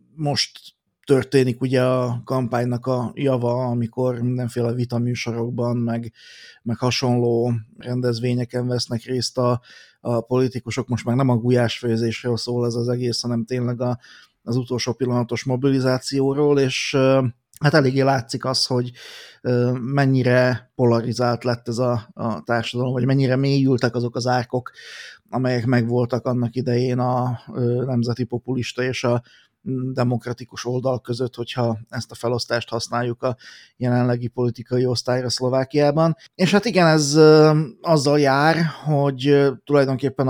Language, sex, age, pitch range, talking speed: Hungarian, male, 30-49, 120-130 Hz, 125 wpm